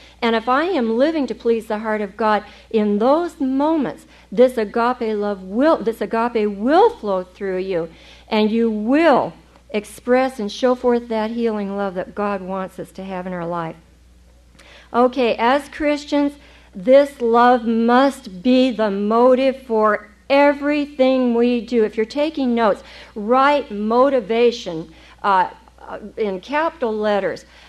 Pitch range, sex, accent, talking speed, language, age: 215-270 Hz, female, American, 145 wpm, English, 50-69